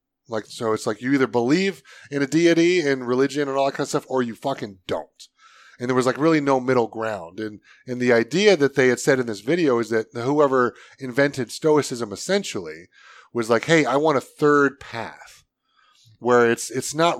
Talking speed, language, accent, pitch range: 205 wpm, English, American, 120-150 Hz